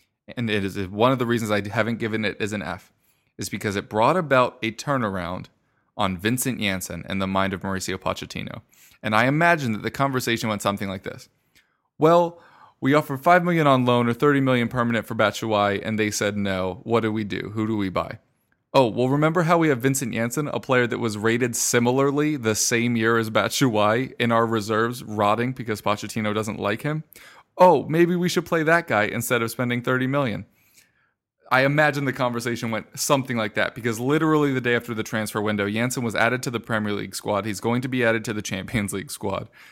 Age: 20-39